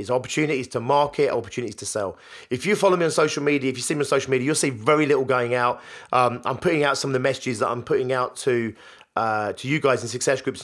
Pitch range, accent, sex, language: 125-150 Hz, British, male, English